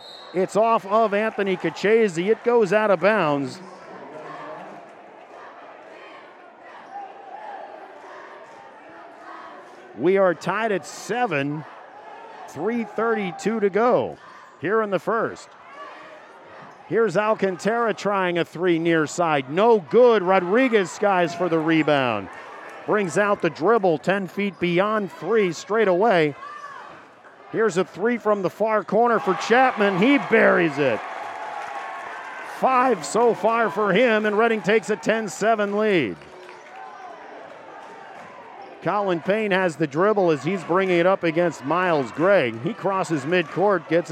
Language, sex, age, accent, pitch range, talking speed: English, male, 50-69, American, 170-215 Hz, 115 wpm